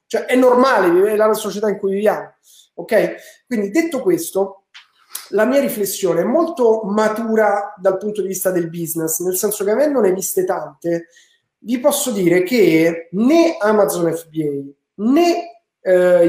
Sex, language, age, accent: male, Italian, 30-49, native